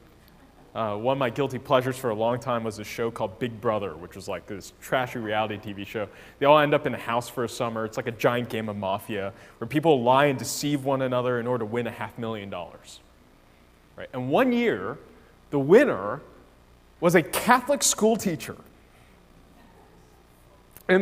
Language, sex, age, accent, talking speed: English, male, 20-39, American, 190 wpm